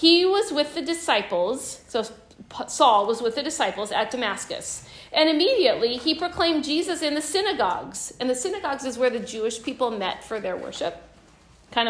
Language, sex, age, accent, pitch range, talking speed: English, female, 50-69, American, 240-320 Hz, 170 wpm